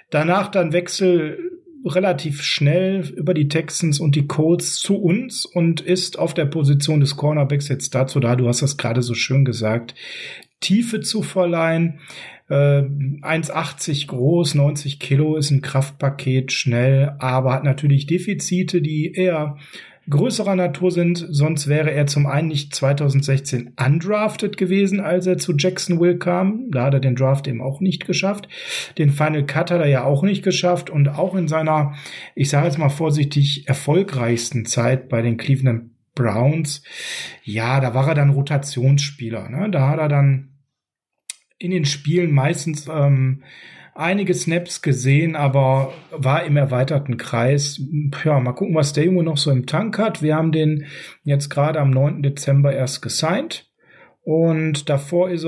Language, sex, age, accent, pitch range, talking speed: German, male, 40-59, German, 135-175 Hz, 155 wpm